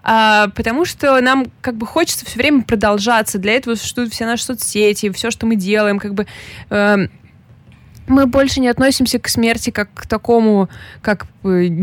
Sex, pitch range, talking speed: female, 190-235 Hz, 165 wpm